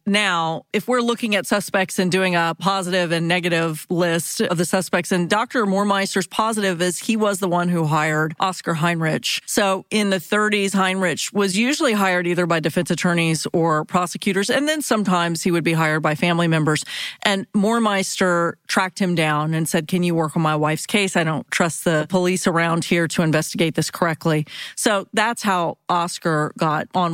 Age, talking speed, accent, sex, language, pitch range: 40-59, 185 wpm, American, female, English, 170-205 Hz